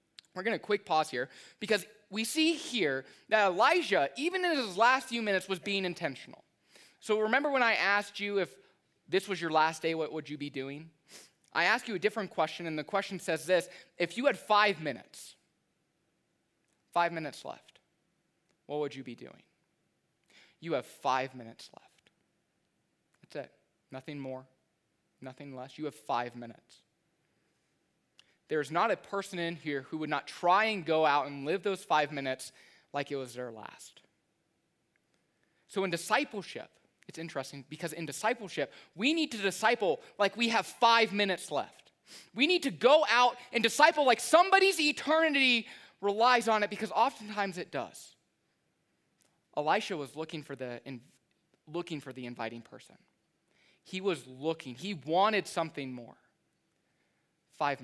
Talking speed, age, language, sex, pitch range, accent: 160 wpm, 20-39, English, male, 145-220 Hz, American